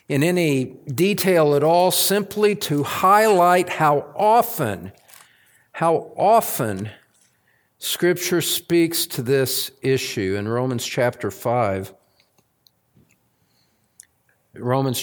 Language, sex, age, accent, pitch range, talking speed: English, male, 50-69, American, 125-180 Hz, 90 wpm